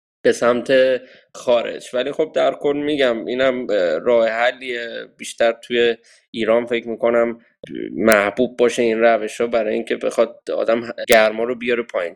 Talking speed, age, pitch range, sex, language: 150 wpm, 20-39, 115-135 Hz, male, Persian